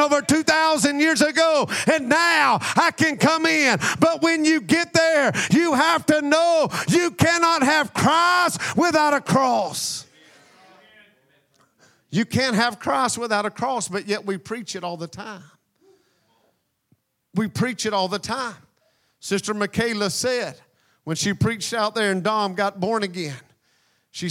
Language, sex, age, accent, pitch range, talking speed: English, male, 50-69, American, 180-250 Hz, 150 wpm